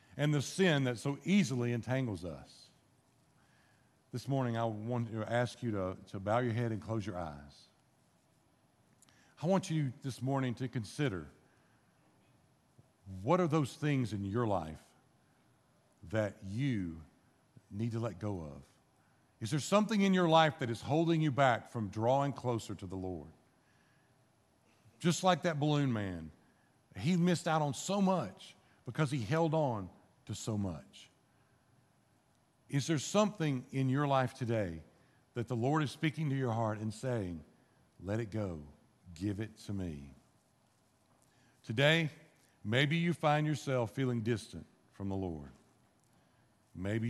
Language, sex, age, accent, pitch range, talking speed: English, male, 50-69, American, 100-140 Hz, 145 wpm